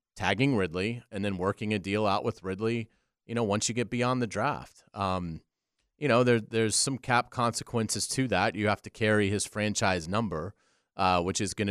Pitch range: 95-120 Hz